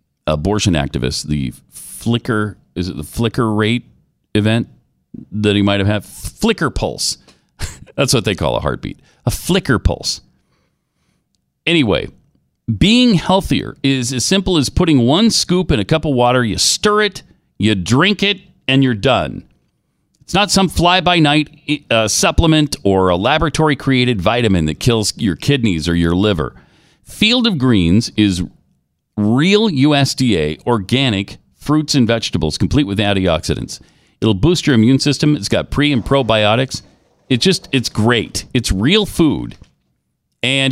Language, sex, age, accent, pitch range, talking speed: English, male, 40-59, American, 100-150 Hz, 145 wpm